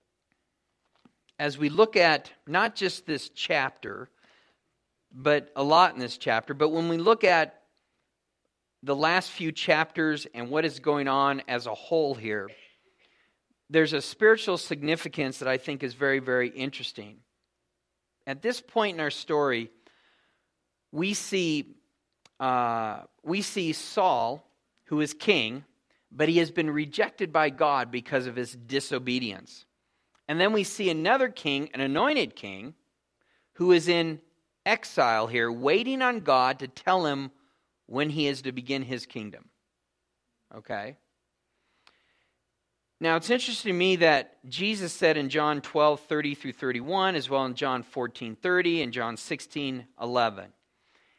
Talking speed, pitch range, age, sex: 140 wpm, 125-170 Hz, 50-69, male